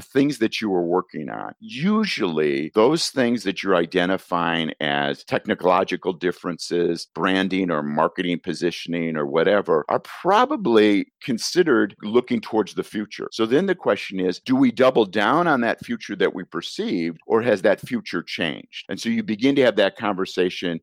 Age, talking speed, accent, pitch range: 50-69, 160 wpm, American, 85-110 Hz